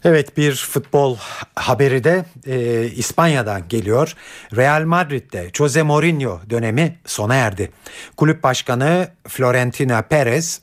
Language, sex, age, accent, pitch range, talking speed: Turkish, male, 60-79, native, 115-155 Hz, 105 wpm